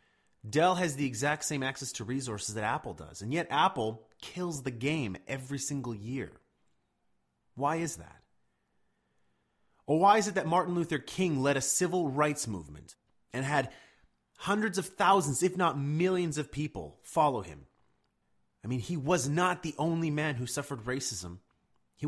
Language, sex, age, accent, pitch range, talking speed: English, male, 30-49, American, 120-175 Hz, 165 wpm